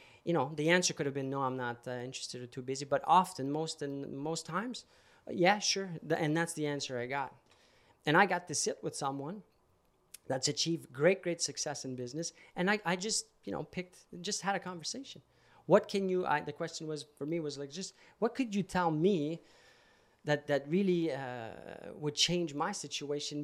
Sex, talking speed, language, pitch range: male, 205 wpm, French, 140-185 Hz